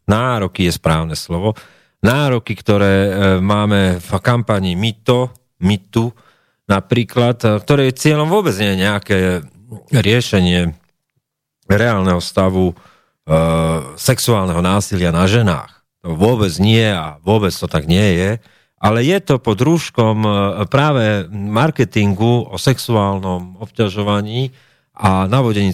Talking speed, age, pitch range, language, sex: 105 wpm, 40-59, 95-125 Hz, Slovak, male